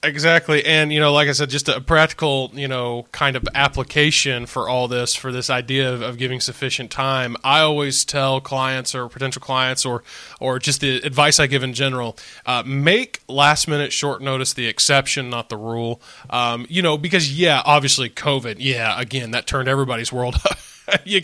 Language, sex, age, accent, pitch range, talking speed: English, male, 20-39, American, 130-155 Hz, 190 wpm